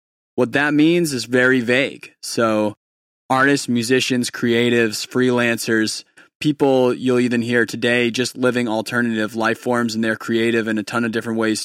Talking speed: 155 wpm